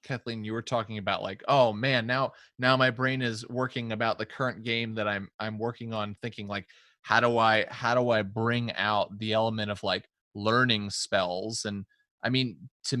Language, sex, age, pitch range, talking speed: English, male, 20-39, 105-125 Hz, 200 wpm